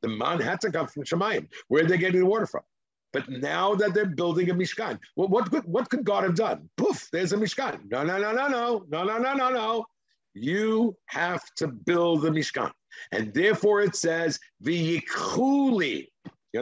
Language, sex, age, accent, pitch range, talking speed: English, male, 60-79, American, 140-195 Hz, 195 wpm